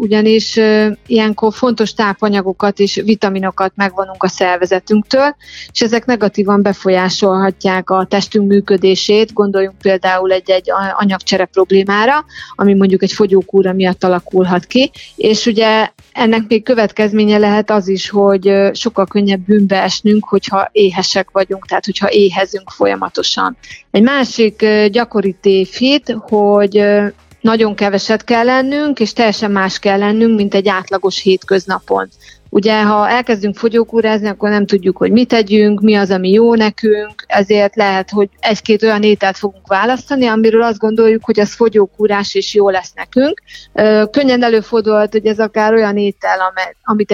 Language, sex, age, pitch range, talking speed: Hungarian, female, 30-49, 195-220 Hz, 135 wpm